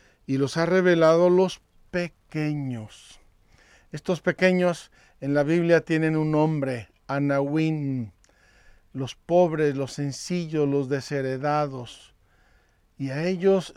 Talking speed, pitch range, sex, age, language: 105 wpm, 135-165 Hz, male, 50-69, Spanish